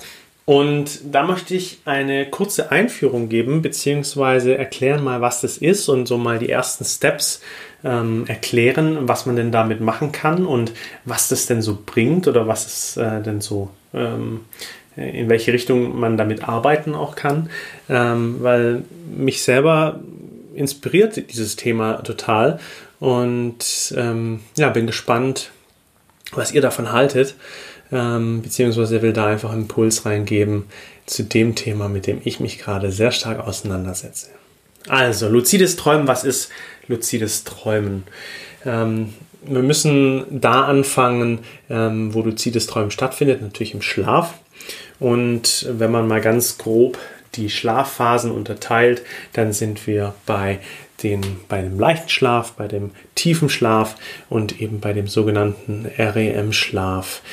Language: German